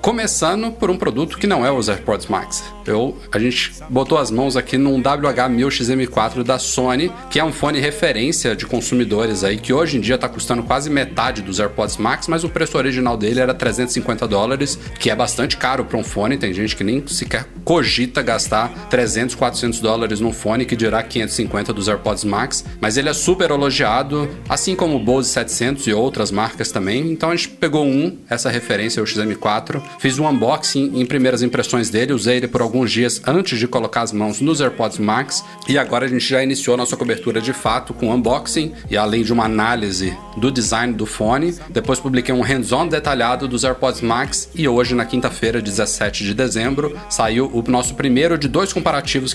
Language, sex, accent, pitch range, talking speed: Portuguese, male, Brazilian, 115-140 Hz, 195 wpm